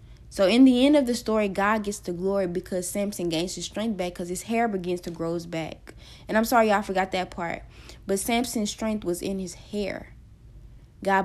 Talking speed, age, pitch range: 210 wpm, 20-39, 175-215 Hz